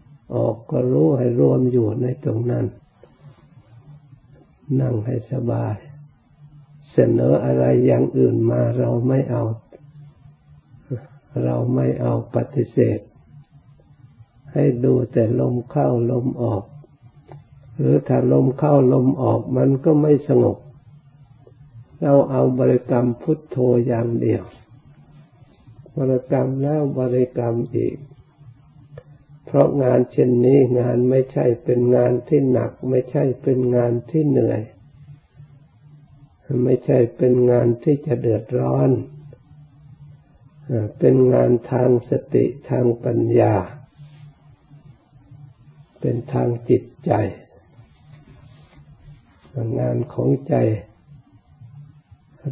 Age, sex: 60-79, male